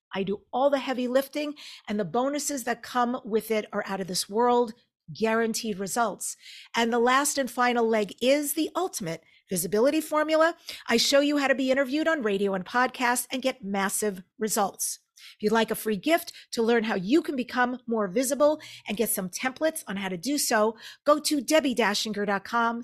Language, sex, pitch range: English, female, 215-285 Hz